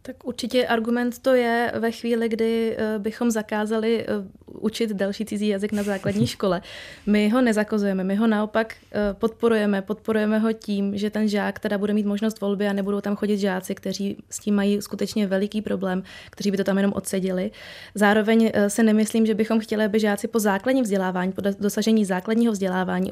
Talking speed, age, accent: 175 wpm, 20-39, native